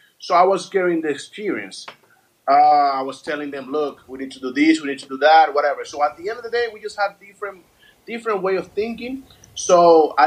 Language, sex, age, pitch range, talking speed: English, male, 30-49, 145-205 Hz, 235 wpm